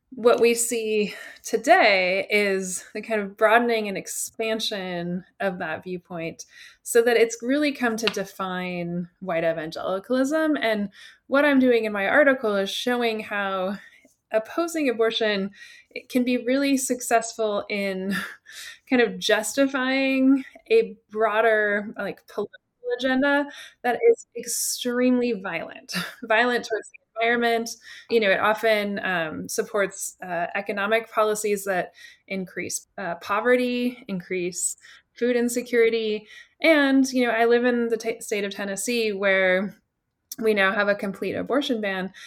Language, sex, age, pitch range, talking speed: English, female, 20-39, 205-255 Hz, 125 wpm